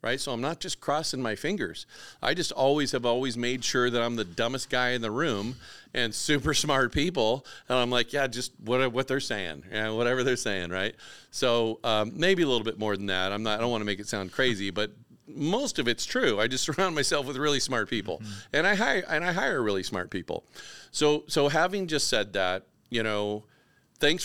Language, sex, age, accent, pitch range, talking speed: English, male, 40-59, American, 105-125 Hz, 230 wpm